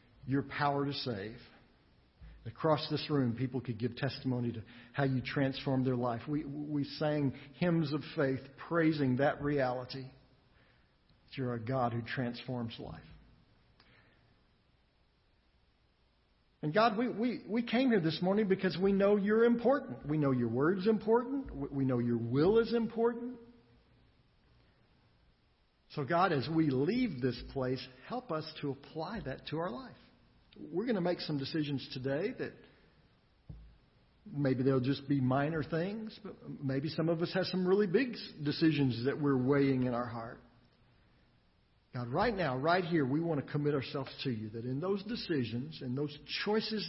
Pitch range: 125-165 Hz